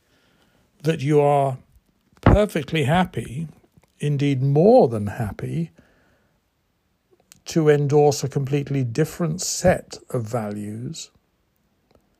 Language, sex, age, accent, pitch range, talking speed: English, male, 60-79, British, 120-160 Hz, 85 wpm